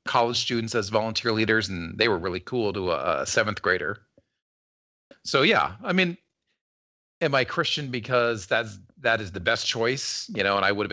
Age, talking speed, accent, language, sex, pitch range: 40-59, 190 wpm, American, English, male, 100-125 Hz